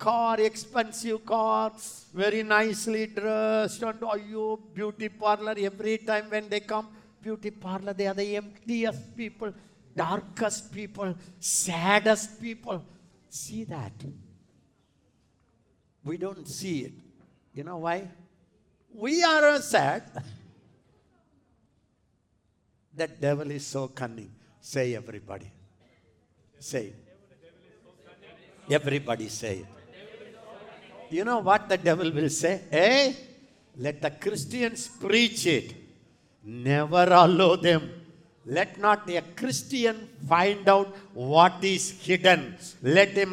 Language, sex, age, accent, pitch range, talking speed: English, male, 60-79, Indian, 165-220 Hz, 105 wpm